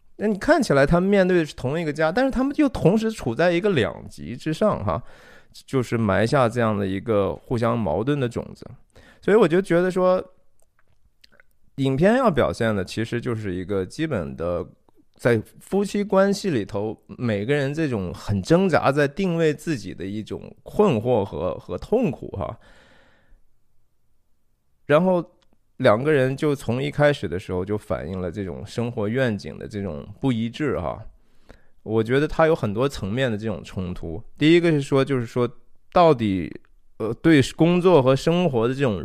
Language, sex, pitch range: Chinese, male, 110-165 Hz